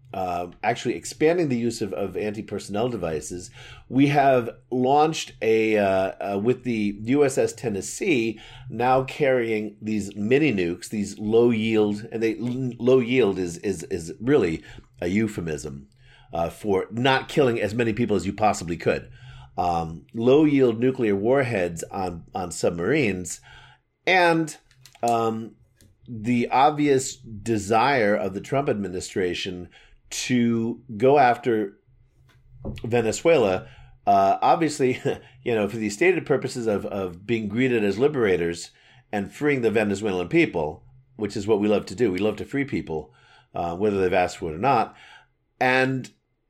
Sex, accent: male, American